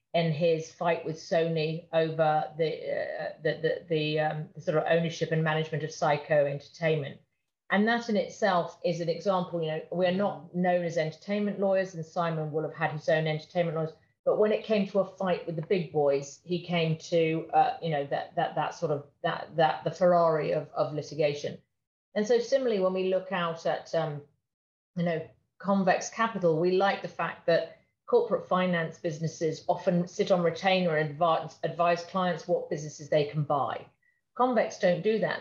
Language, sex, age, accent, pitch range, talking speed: English, female, 40-59, British, 160-195 Hz, 190 wpm